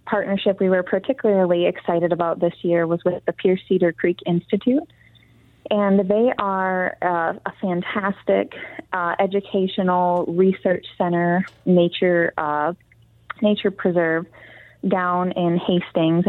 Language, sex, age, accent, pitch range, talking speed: English, female, 20-39, American, 170-195 Hz, 120 wpm